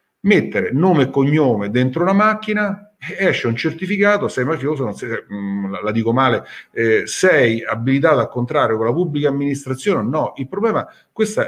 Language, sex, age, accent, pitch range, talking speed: Italian, male, 50-69, native, 120-170 Hz, 160 wpm